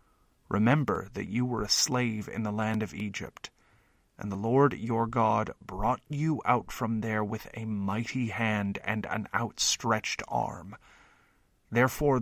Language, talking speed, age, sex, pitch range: English, 145 wpm, 30-49, male, 110-130 Hz